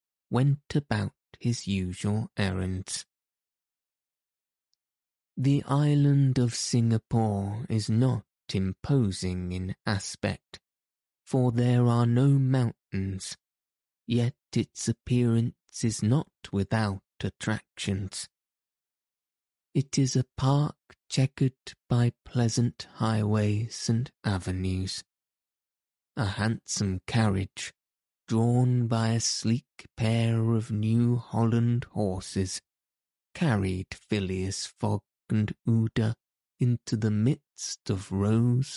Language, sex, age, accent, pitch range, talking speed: English, male, 20-39, British, 95-120 Hz, 90 wpm